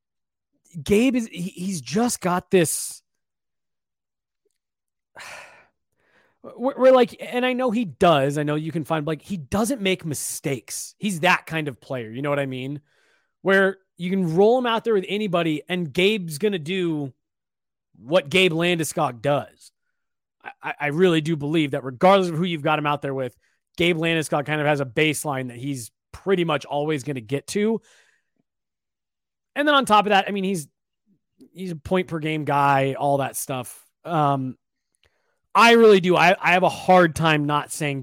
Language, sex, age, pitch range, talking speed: English, male, 30-49, 140-190 Hz, 180 wpm